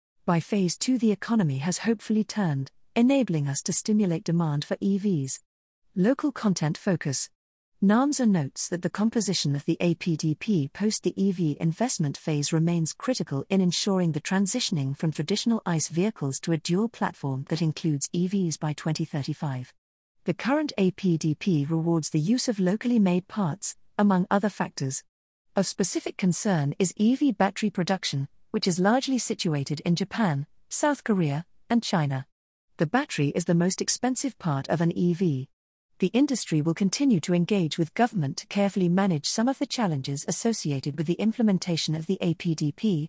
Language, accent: English, British